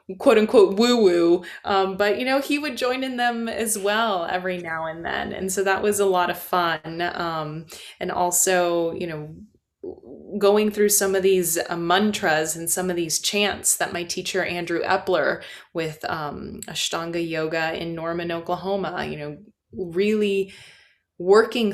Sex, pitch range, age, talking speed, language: female, 165-205 Hz, 20-39, 165 wpm, English